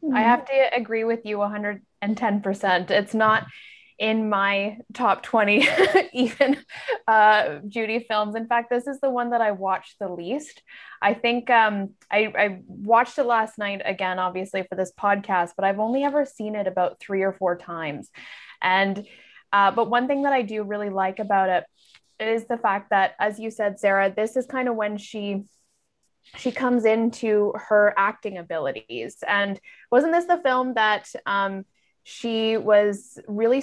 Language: English